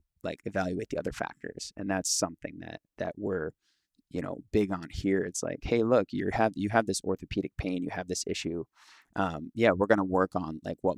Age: 20-39